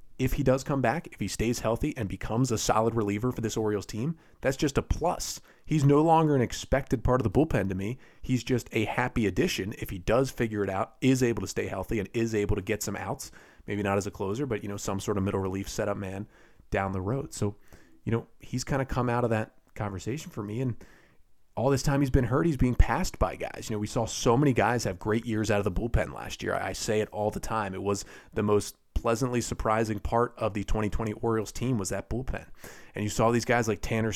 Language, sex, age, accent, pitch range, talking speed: English, male, 30-49, American, 100-120 Hz, 250 wpm